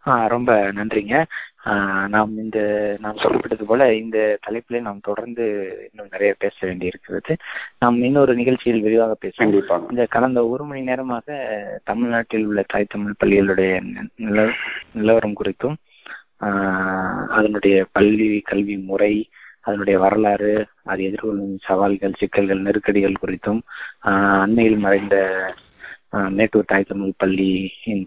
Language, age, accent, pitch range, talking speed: Tamil, 20-39, native, 100-115 Hz, 95 wpm